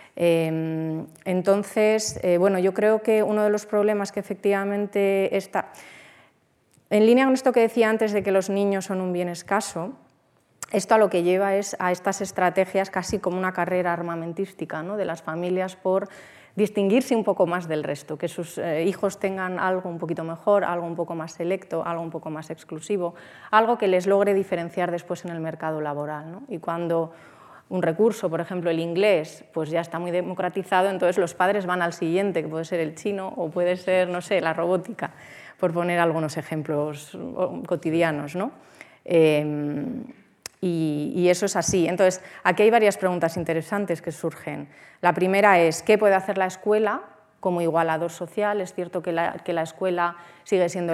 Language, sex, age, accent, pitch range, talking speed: Spanish, female, 30-49, Spanish, 165-195 Hz, 180 wpm